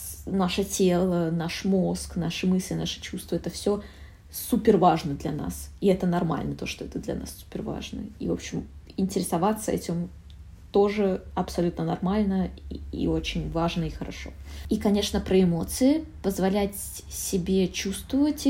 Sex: female